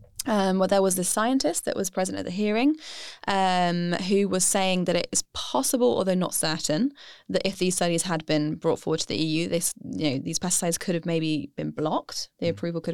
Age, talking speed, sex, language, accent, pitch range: 10-29, 205 wpm, female, English, British, 165-195 Hz